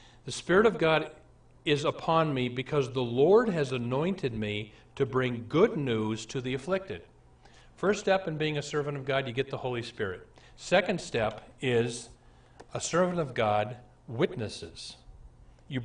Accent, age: American, 50-69